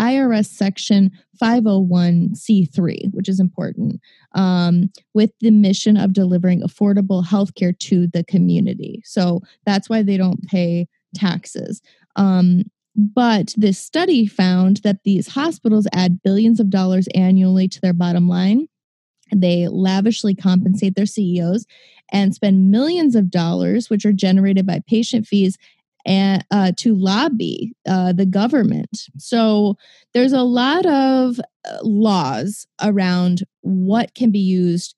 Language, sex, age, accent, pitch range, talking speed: English, female, 20-39, American, 180-210 Hz, 130 wpm